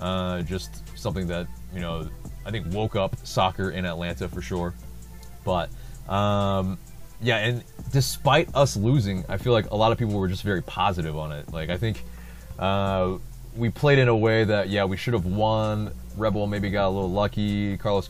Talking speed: 190 wpm